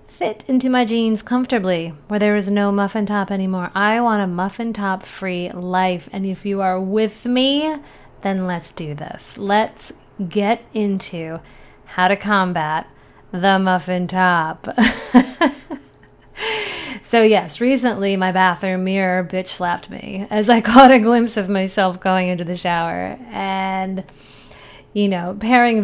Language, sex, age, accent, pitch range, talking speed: English, female, 30-49, American, 185-225 Hz, 145 wpm